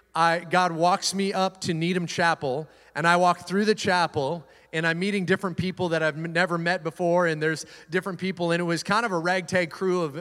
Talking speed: 215 wpm